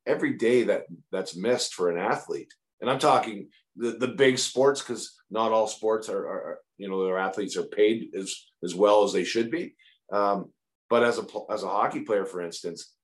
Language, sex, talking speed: English, male, 200 wpm